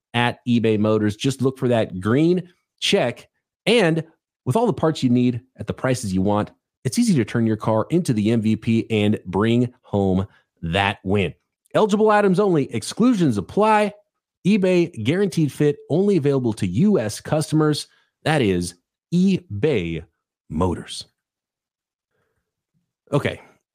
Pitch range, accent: 105-150 Hz, American